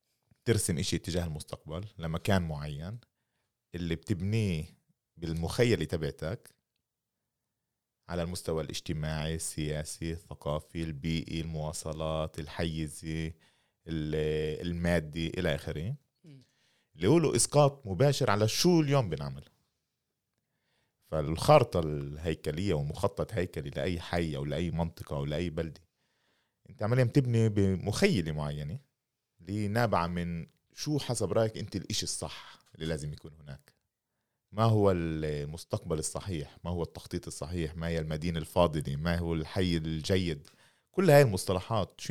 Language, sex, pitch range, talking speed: Arabic, male, 80-110 Hz, 115 wpm